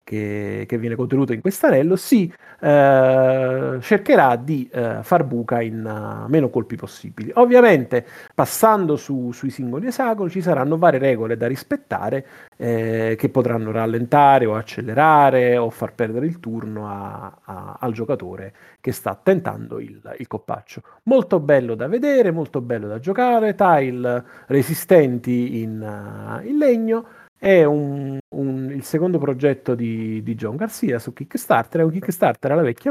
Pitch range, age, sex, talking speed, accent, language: 115-155 Hz, 40-59, male, 150 wpm, native, Italian